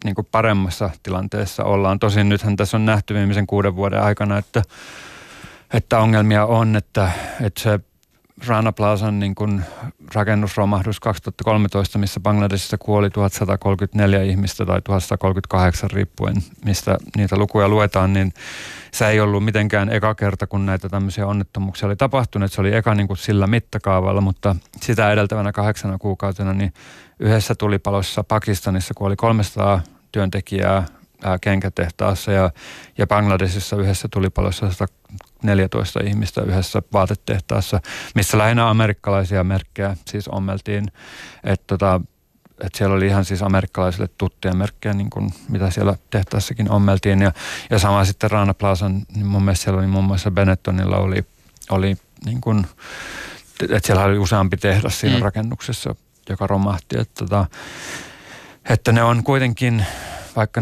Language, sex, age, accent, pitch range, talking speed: Finnish, male, 30-49, native, 95-105 Hz, 130 wpm